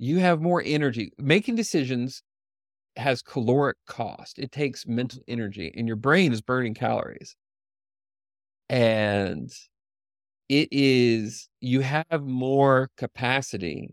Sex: male